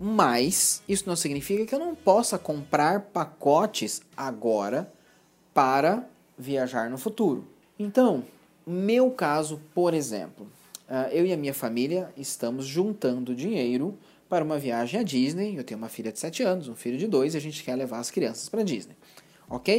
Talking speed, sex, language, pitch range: 165 wpm, male, Portuguese, 135-195 Hz